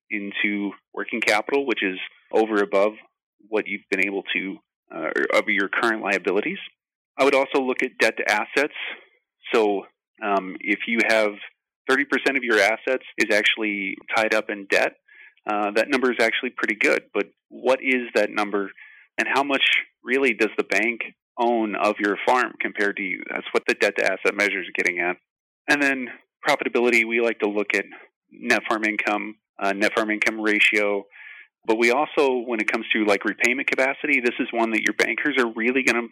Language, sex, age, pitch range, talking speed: English, male, 30-49, 100-120 Hz, 190 wpm